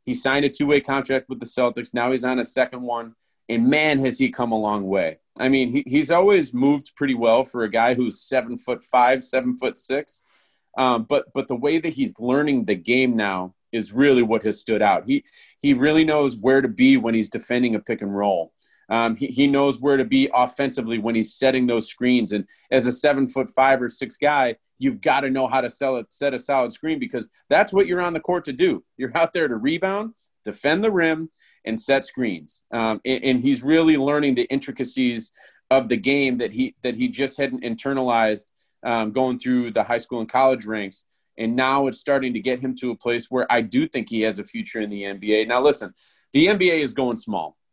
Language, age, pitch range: English, 30-49, 115-145 Hz